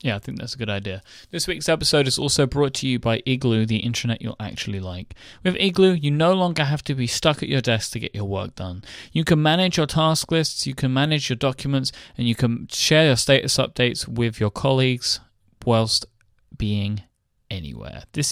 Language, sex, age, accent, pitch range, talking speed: English, male, 20-39, British, 105-130 Hz, 210 wpm